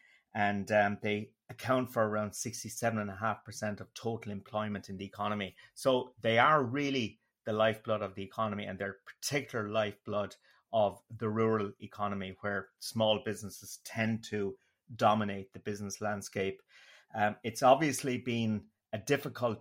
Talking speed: 155 wpm